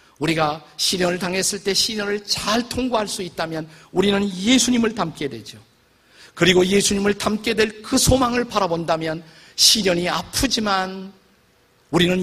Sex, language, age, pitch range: male, Korean, 50-69, 155-210 Hz